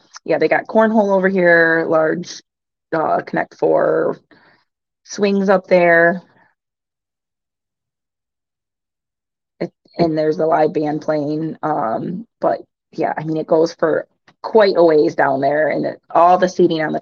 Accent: American